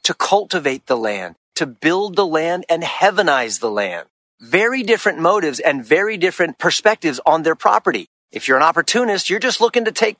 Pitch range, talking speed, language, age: 150-215 Hz, 180 wpm, English, 40-59